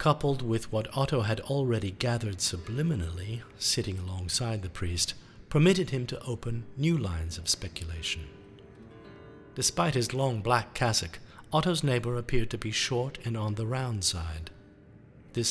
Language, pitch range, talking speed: English, 95-125 Hz, 145 wpm